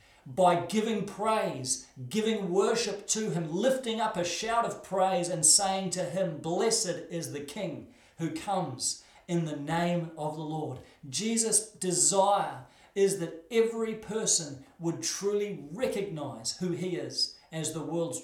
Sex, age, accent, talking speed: male, 40-59, Australian, 145 wpm